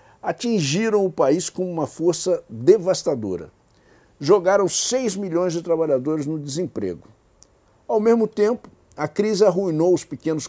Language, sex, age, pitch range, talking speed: Portuguese, male, 60-79, 125-200 Hz, 125 wpm